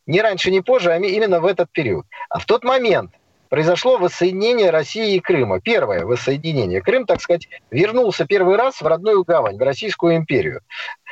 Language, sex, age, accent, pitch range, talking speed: Russian, male, 40-59, native, 165-230 Hz, 175 wpm